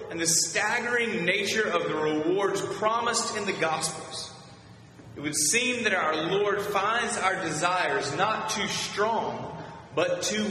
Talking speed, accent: 145 wpm, American